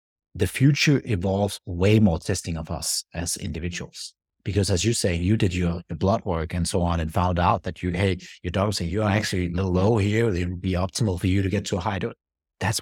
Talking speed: 240 wpm